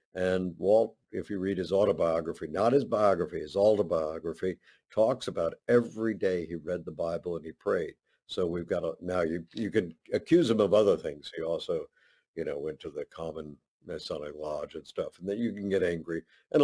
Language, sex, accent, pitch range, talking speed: English, male, American, 85-105 Hz, 195 wpm